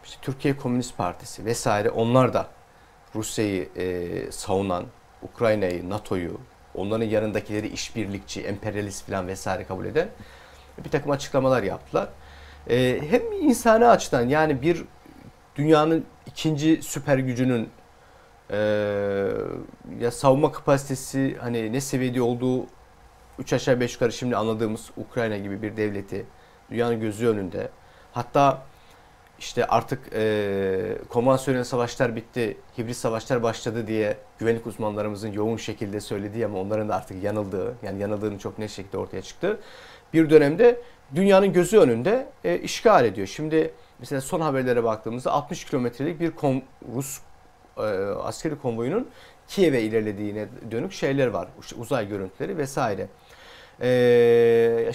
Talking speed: 120 wpm